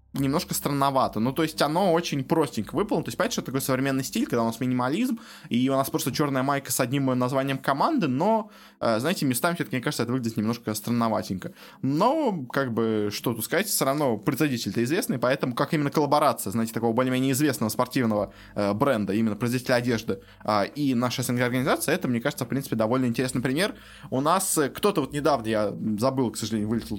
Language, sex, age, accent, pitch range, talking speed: Russian, male, 20-39, native, 115-145 Hz, 185 wpm